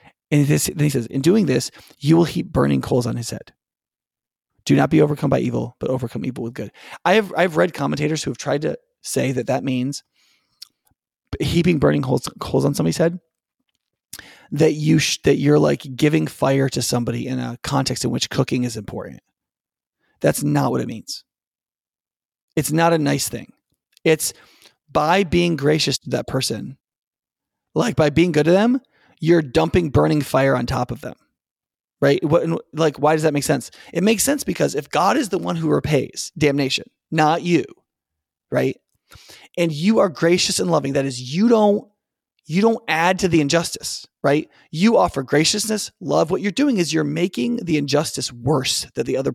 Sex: male